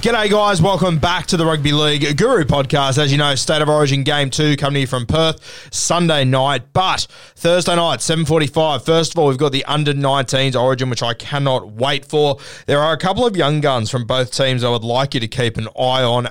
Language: English